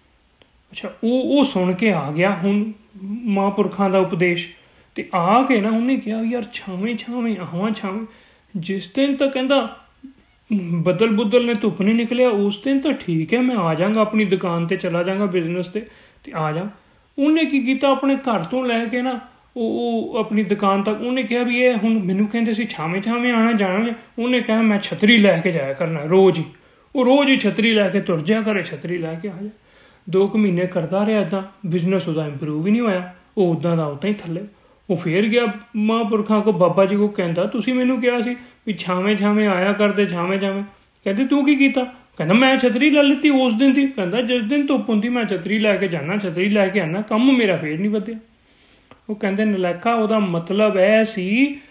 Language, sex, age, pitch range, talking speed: Punjabi, male, 30-49, 190-245 Hz, 115 wpm